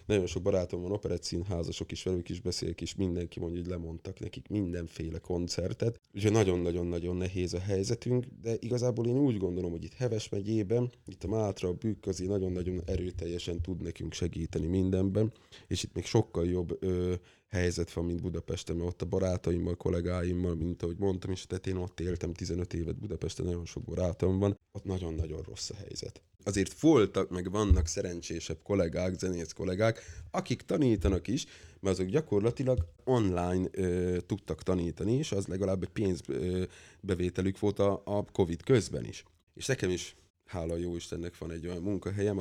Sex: male